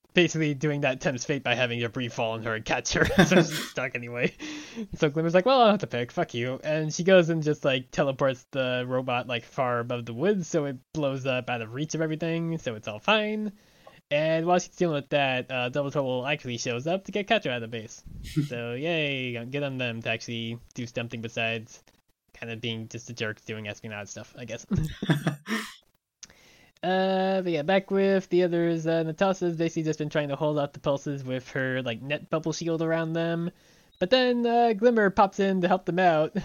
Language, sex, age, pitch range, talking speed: English, male, 20-39, 125-165 Hz, 215 wpm